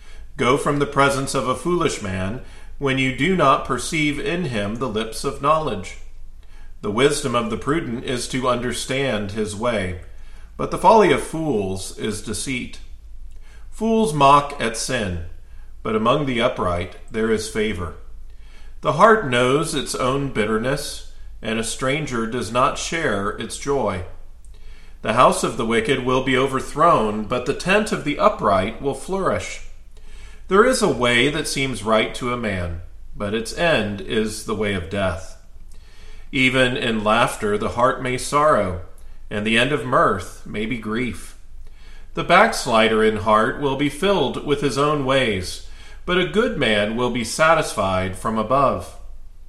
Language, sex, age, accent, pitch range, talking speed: English, male, 40-59, American, 95-135 Hz, 160 wpm